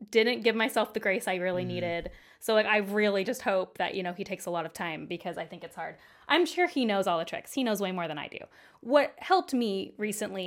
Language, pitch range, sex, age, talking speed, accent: English, 185-220 Hz, female, 20-39, 265 wpm, American